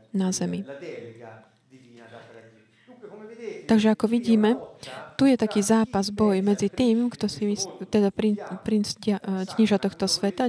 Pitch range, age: 190-220 Hz, 20-39